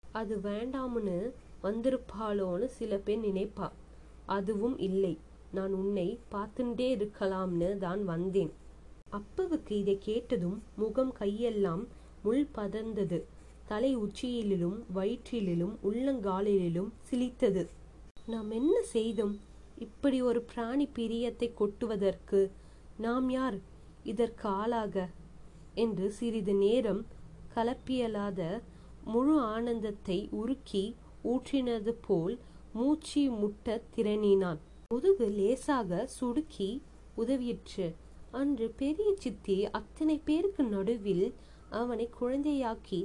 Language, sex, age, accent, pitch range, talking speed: Tamil, female, 20-39, native, 200-245 Hz, 80 wpm